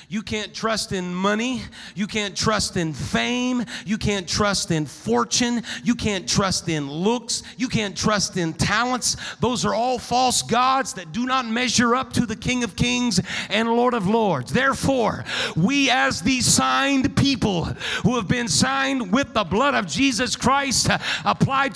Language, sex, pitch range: English, male, 215-270 Hz